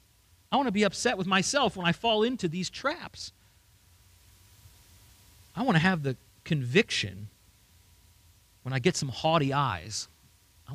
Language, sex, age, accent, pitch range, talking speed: English, male, 40-59, American, 100-155 Hz, 145 wpm